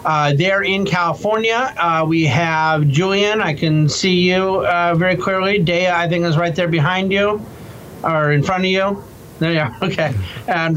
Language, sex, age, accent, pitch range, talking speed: English, male, 40-59, American, 155-185 Hz, 185 wpm